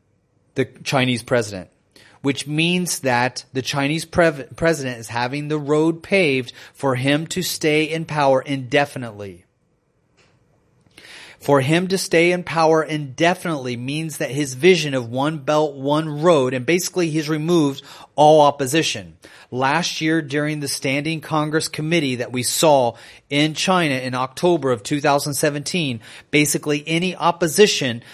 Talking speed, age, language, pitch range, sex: 130 wpm, 30-49, English, 135-165 Hz, male